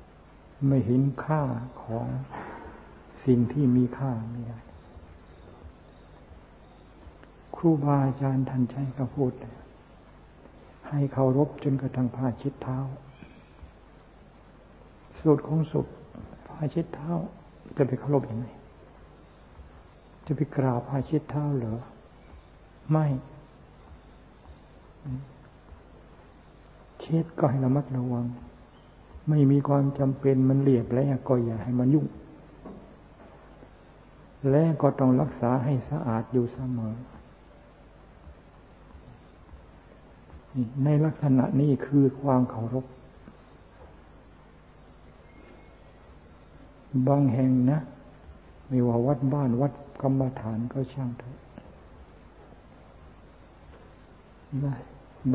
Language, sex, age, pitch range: Thai, male, 60-79, 115-140 Hz